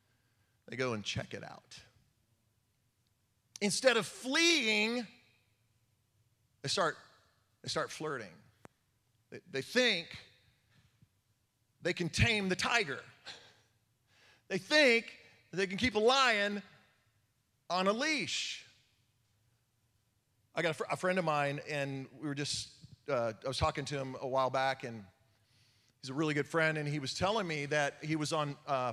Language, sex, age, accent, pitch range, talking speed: English, male, 40-59, American, 110-150 Hz, 145 wpm